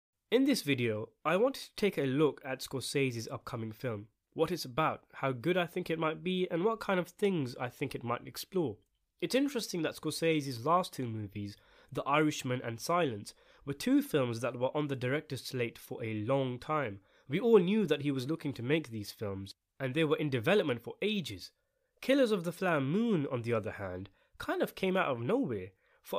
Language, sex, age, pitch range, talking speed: English, male, 20-39, 120-175 Hz, 210 wpm